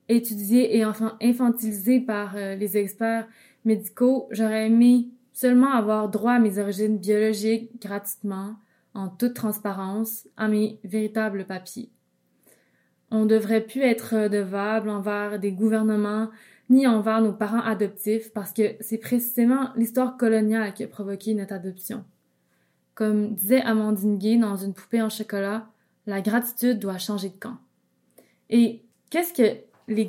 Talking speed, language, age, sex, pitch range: 140 wpm, French, 20-39, female, 210-235 Hz